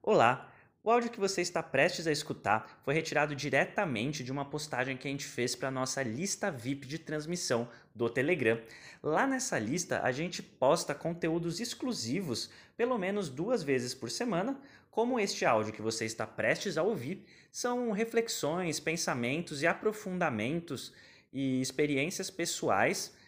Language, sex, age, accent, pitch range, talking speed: Portuguese, male, 20-39, Brazilian, 130-185 Hz, 150 wpm